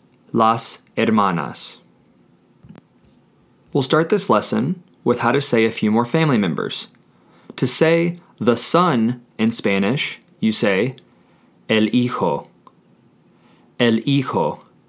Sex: male